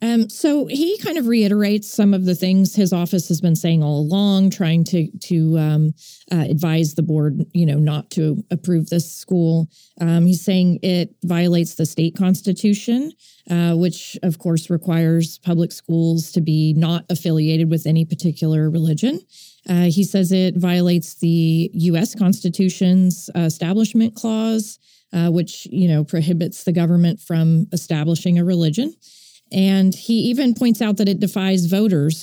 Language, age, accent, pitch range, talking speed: English, 30-49, American, 165-195 Hz, 160 wpm